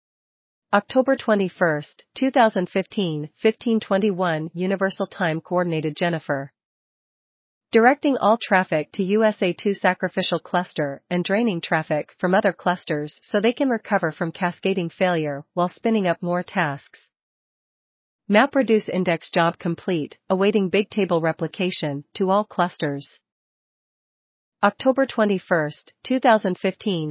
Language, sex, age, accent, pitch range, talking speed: English, female, 40-59, American, 165-210 Hz, 105 wpm